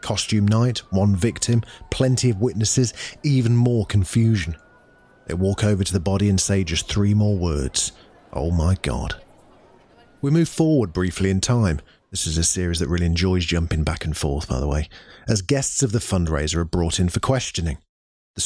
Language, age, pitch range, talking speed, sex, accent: English, 40-59, 85-120 Hz, 180 wpm, male, British